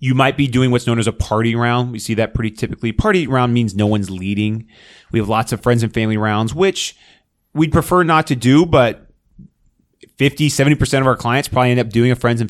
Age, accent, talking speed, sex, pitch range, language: 30-49, American, 230 wpm, male, 100-140 Hz, English